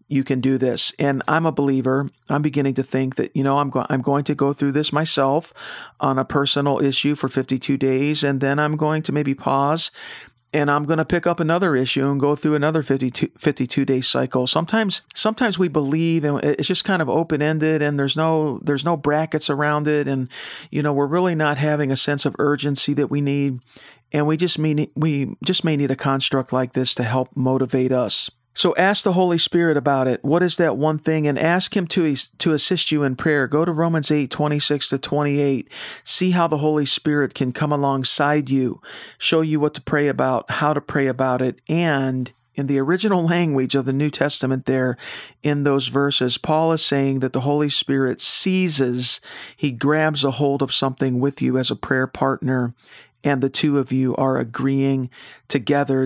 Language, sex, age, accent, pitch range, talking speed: English, male, 50-69, American, 135-155 Hz, 205 wpm